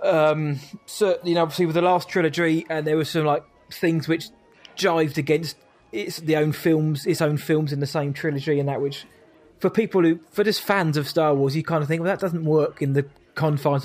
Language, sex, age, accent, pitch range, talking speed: English, male, 20-39, British, 145-170 Hz, 230 wpm